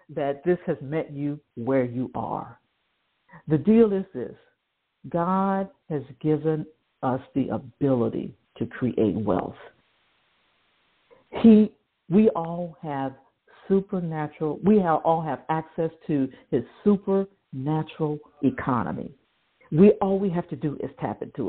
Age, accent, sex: 50-69, American, female